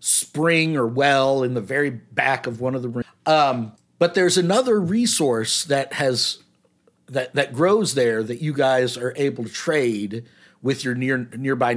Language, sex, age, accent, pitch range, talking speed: English, male, 50-69, American, 125-165 Hz, 175 wpm